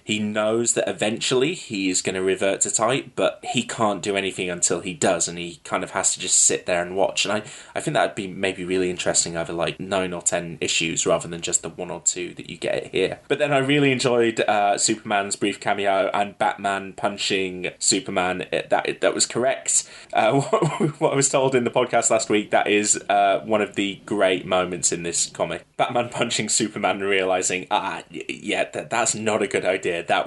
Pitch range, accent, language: 90-120 Hz, British, English